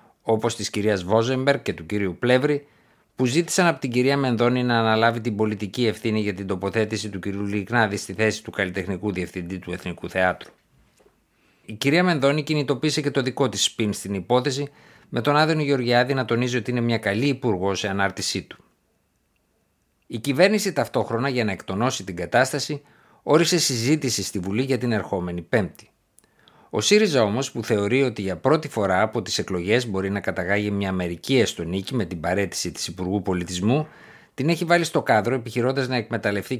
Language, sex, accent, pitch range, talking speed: Greek, male, native, 100-135 Hz, 175 wpm